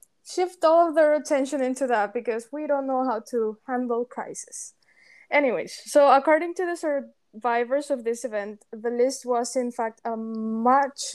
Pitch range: 220-275 Hz